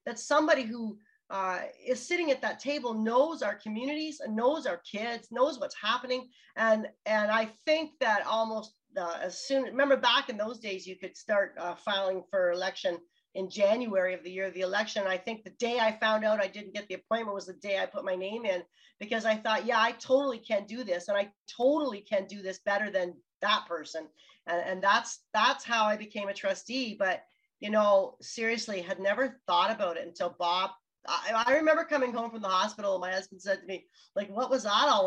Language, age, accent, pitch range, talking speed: English, 40-59, American, 200-275 Hz, 215 wpm